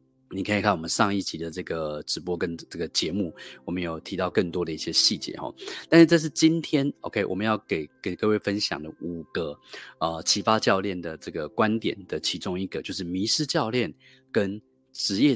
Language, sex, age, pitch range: Chinese, male, 30-49, 90-135 Hz